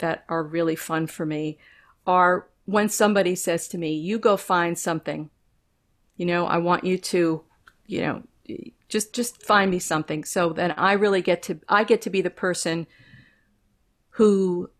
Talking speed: 170 wpm